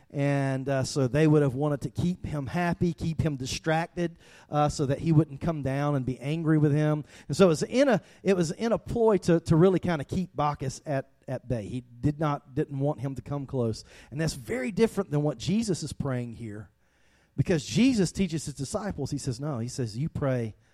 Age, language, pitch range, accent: 40-59, English, 130-160 Hz, American